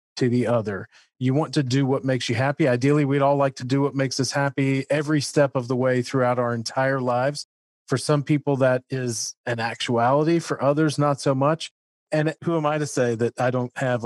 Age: 40-59